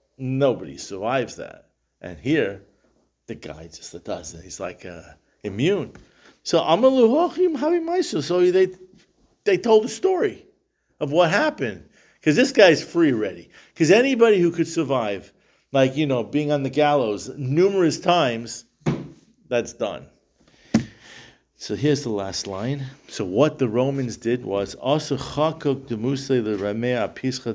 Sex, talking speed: male, 135 wpm